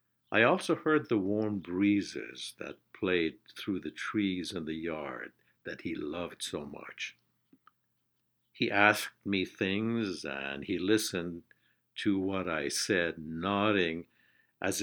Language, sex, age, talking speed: English, male, 60-79, 130 wpm